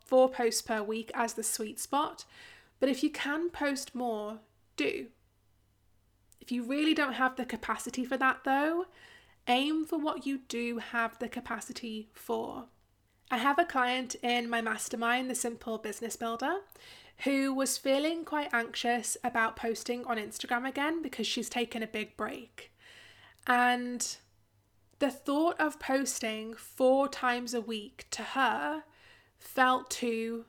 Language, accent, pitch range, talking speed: English, British, 230-270 Hz, 145 wpm